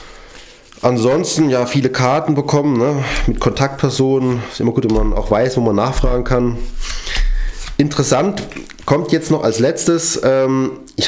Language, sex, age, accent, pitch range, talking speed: German, male, 30-49, German, 115-145 Hz, 145 wpm